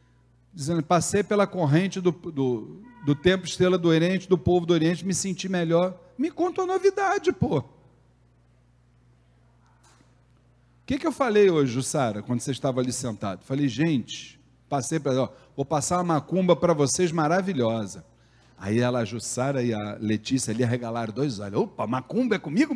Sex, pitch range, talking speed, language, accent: male, 115-175 Hz, 160 wpm, Portuguese, Brazilian